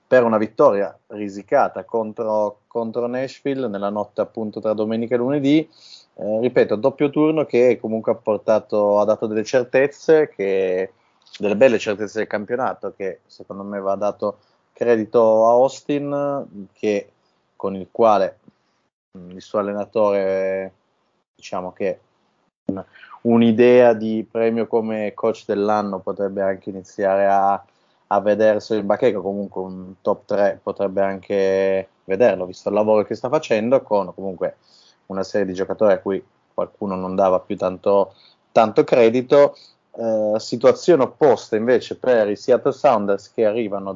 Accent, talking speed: native, 140 wpm